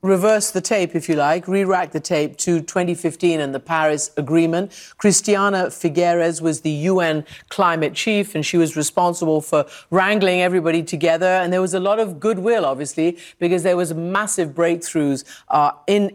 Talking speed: 170 wpm